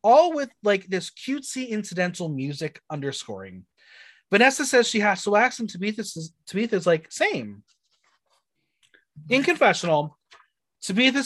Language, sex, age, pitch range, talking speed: English, male, 30-49, 170-230 Hz, 115 wpm